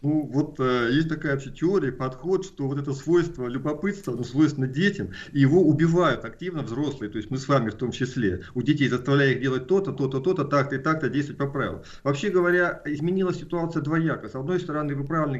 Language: Russian